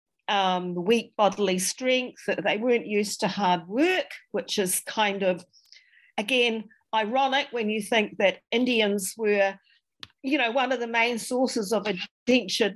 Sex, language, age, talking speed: female, English, 40-59, 150 wpm